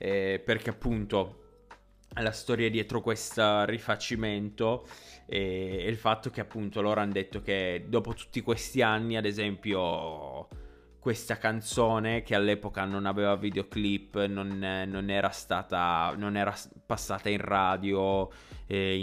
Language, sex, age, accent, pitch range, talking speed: Italian, male, 20-39, native, 95-115 Hz, 130 wpm